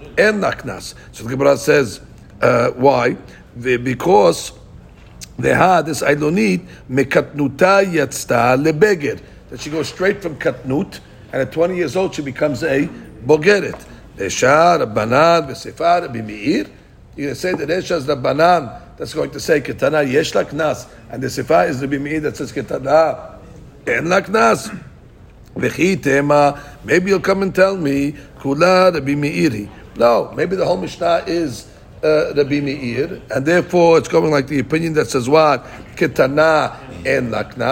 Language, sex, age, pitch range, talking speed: English, male, 60-79, 140-170 Hz, 120 wpm